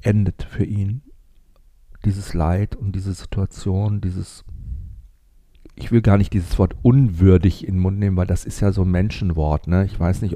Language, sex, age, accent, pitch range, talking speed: German, male, 50-69, German, 90-105 Hz, 175 wpm